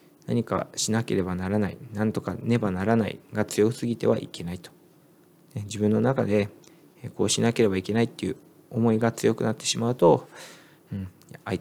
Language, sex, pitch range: Japanese, male, 100-150 Hz